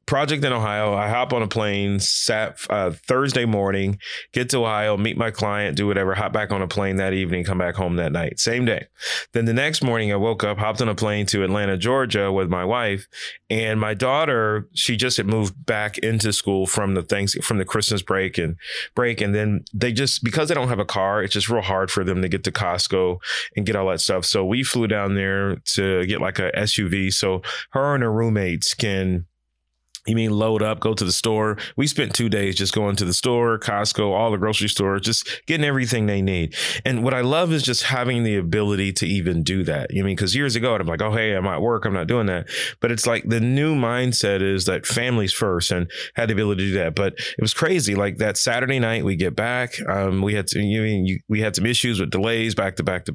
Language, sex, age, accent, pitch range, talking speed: English, male, 30-49, American, 95-115 Hz, 245 wpm